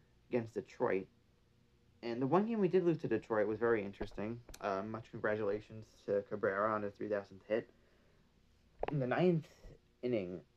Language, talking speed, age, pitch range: English, 155 wpm, 30-49, 100-125 Hz